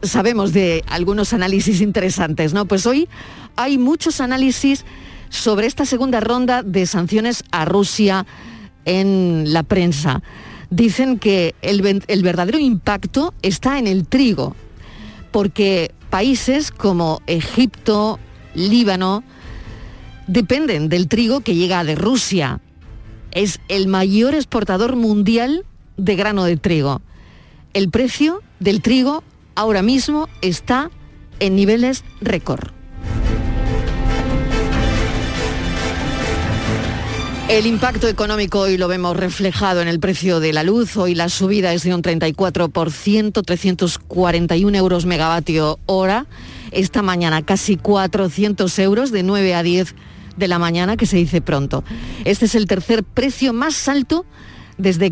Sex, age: female, 40-59